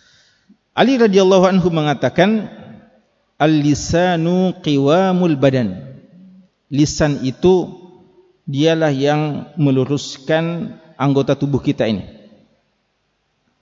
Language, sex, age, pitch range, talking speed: Indonesian, male, 40-59, 140-180 Hz, 70 wpm